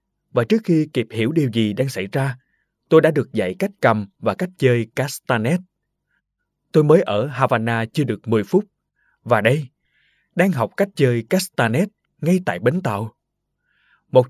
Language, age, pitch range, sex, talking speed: Vietnamese, 20-39, 115-165 Hz, male, 170 wpm